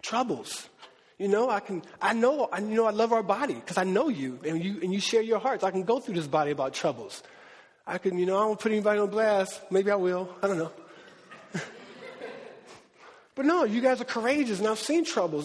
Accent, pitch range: American, 195-255 Hz